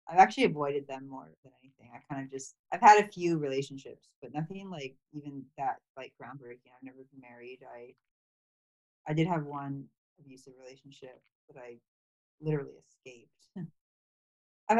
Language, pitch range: English, 135-165 Hz